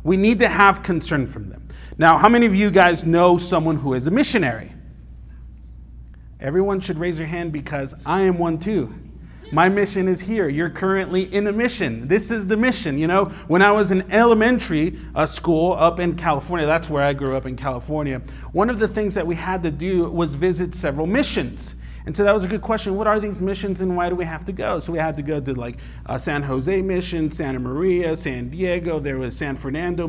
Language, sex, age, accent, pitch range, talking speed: English, male, 30-49, American, 150-200 Hz, 215 wpm